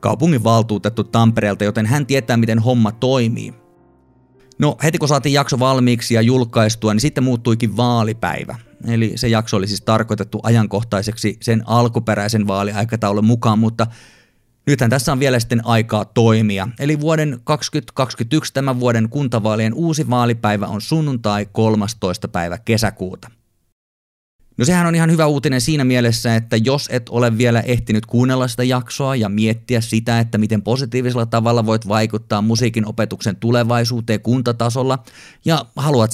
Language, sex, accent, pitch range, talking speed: Finnish, male, native, 105-125 Hz, 140 wpm